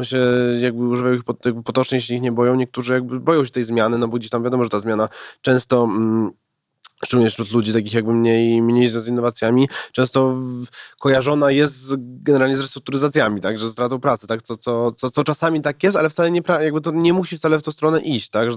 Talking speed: 215 wpm